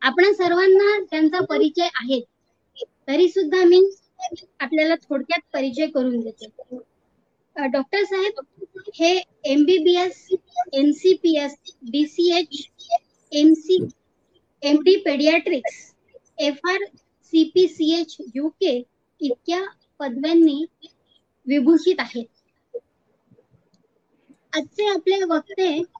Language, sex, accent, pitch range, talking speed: Marathi, male, native, 280-365 Hz, 70 wpm